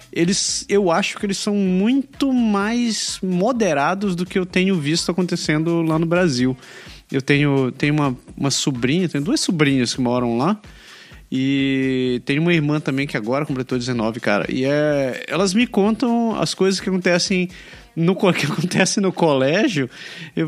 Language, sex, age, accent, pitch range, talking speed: Portuguese, male, 20-39, Brazilian, 135-195 Hz, 150 wpm